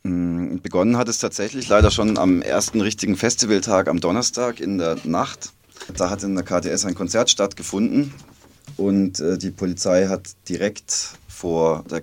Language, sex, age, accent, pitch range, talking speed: German, male, 20-39, German, 75-95 Hz, 150 wpm